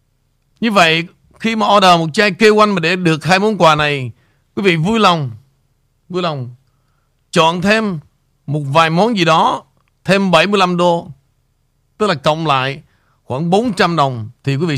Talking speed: 165 wpm